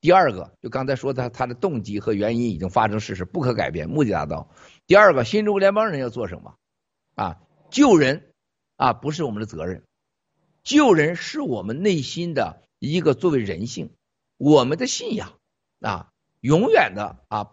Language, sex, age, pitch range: Chinese, male, 50-69, 115-190 Hz